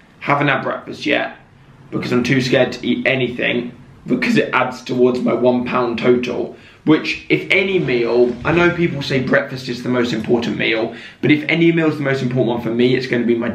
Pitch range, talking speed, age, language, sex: 125-150 Hz, 215 wpm, 20-39, English, male